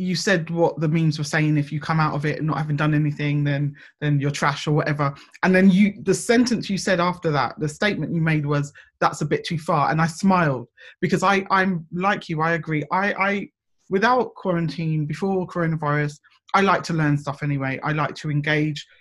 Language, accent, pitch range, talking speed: English, British, 150-185 Hz, 220 wpm